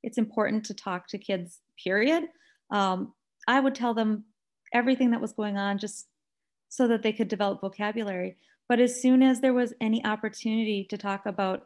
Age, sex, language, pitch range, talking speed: 30-49, female, English, 200-235 Hz, 180 wpm